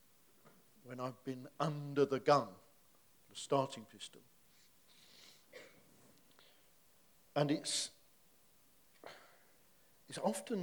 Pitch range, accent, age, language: 120-140 Hz, British, 50-69, English